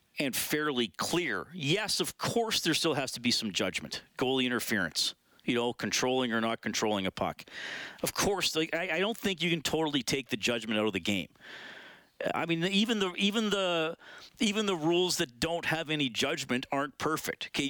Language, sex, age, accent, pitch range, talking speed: English, male, 40-59, American, 125-180 Hz, 185 wpm